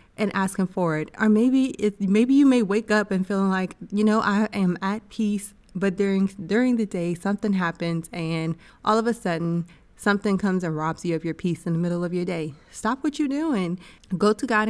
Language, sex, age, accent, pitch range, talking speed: English, female, 20-39, American, 170-210 Hz, 225 wpm